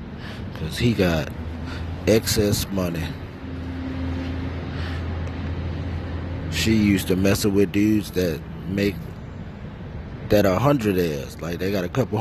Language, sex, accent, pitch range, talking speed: English, male, American, 90-115 Hz, 110 wpm